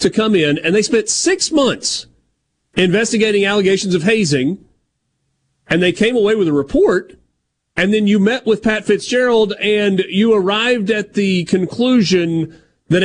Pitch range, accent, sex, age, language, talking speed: 145-215 Hz, American, male, 40-59, English, 150 wpm